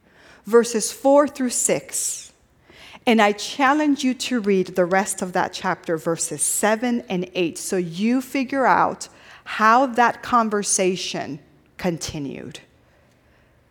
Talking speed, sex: 120 wpm, female